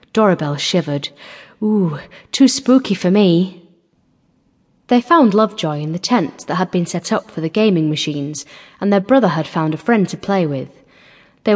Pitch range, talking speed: 165-215 Hz, 170 wpm